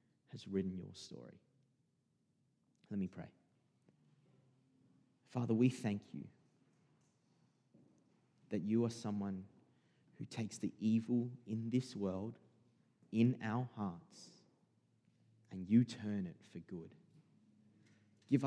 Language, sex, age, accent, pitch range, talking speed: English, male, 30-49, Australian, 100-115 Hz, 105 wpm